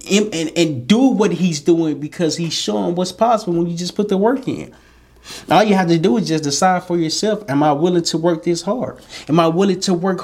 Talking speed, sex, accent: 235 wpm, male, American